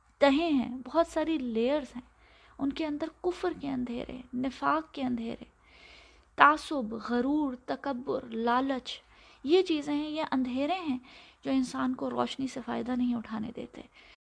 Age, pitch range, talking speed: 20-39, 245-300 Hz, 145 wpm